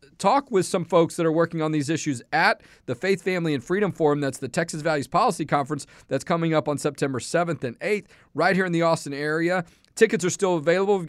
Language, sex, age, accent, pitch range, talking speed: English, male, 40-59, American, 155-190 Hz, 225 wpm